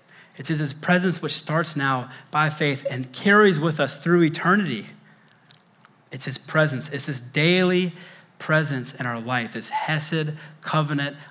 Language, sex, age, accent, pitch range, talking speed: English, male, 30-49, American, 135-175 Hz, 150 wpm